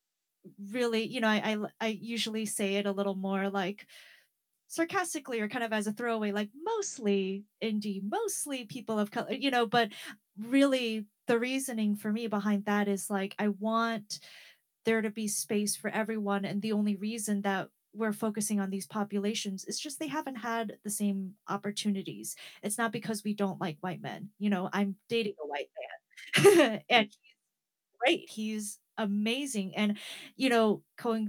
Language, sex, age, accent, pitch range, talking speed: English, female, 30-49, American, 200-230 Hz, 170 wpm